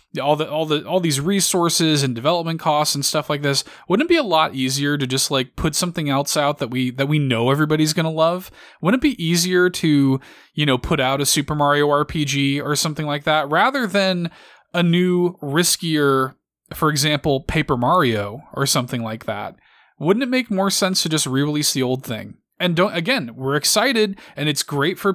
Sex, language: male, English